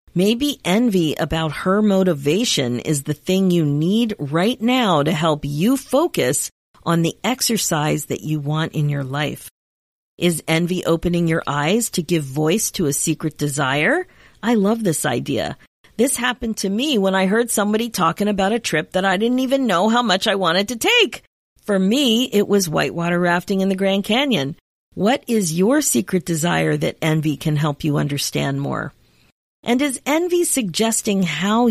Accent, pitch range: American, 155-225 Hz